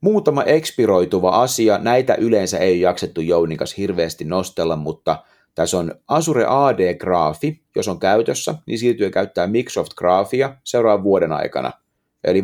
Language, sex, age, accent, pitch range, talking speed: Finnish, male, 30-49, native, 90-120 Hz, 130 wpm